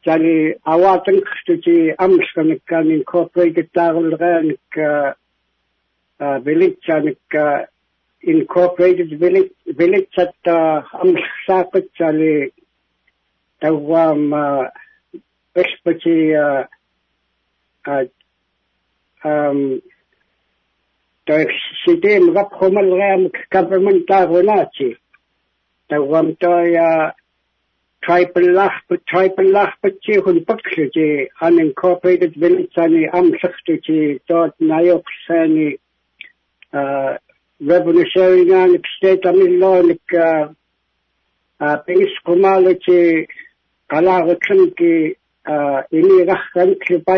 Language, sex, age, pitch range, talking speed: English, male, 60-79, 160-190 Hz, 45 wpm